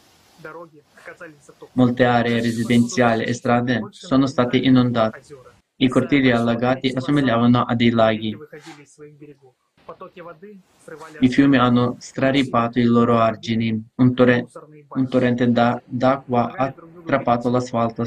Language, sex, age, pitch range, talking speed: Italian, male, 20-39, 120-130 Hz, 95 wpm